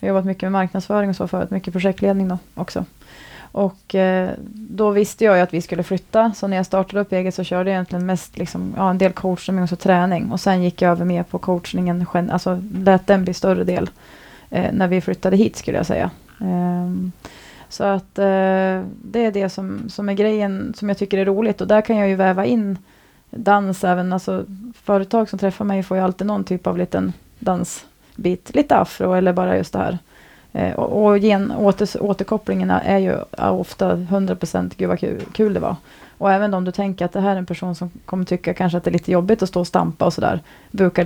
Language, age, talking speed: Swedish, 30-49, 220 wpm